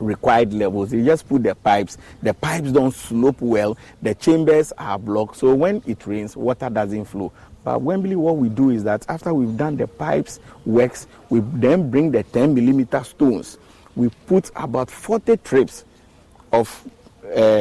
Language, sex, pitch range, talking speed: English, male, 105-130 Hz, 170 wpm